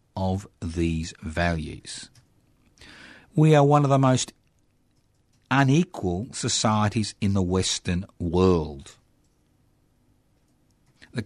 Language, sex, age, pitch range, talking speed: English, male, 50-69, 95-135 Hz, 85 wpm